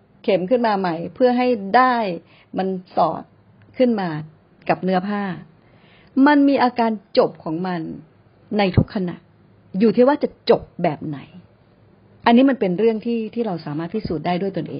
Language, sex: Thai, female